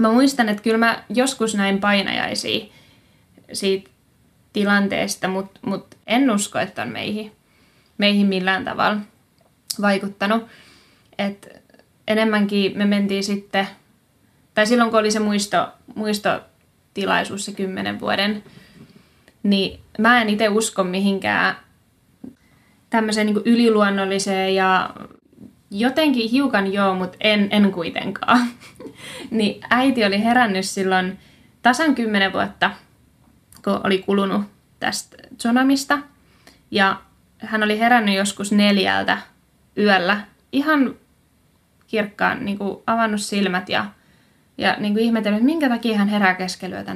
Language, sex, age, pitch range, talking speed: Finnish, female, 20-39, 195-230 Hz, 115 wpm